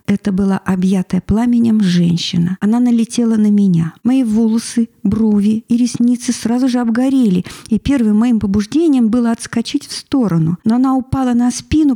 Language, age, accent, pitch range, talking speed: Russian, 50-69, native, 200-245 Hz, 150 wpm